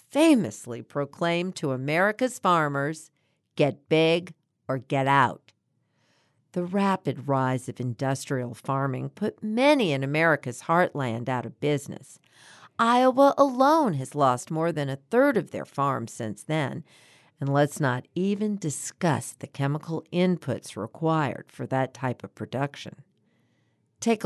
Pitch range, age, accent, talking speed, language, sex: 135-180 Hz, 50-69, American, 130 wpm, English, female